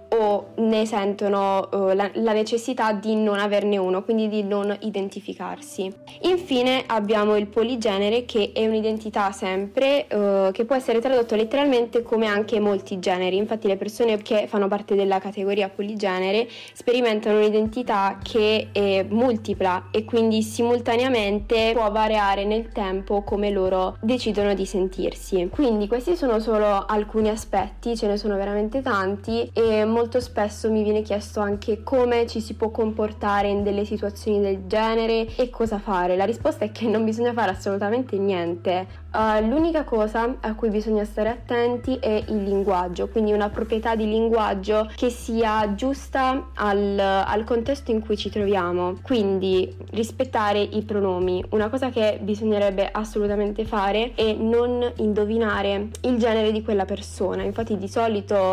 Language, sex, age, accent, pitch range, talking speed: Italian, female, 20-39, native, 200-230 Hz, 150 wpm